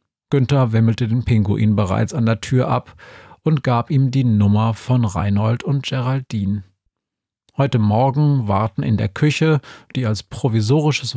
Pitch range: 110-140 Hz